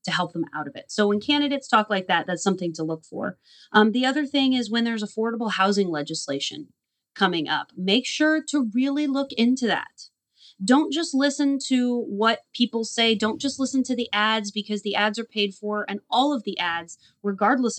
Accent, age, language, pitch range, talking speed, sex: American, 30-49, English, 200-260 Hz, 205 wpm, female